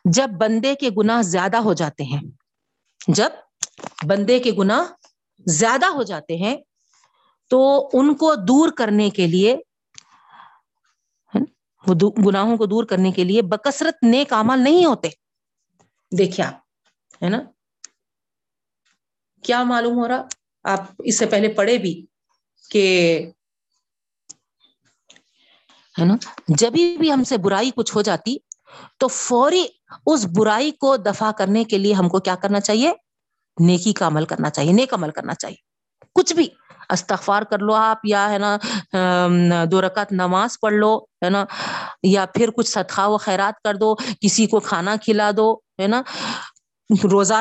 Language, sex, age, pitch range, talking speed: Urdu, female, 50-69, 190-240 Hz, 140 wpm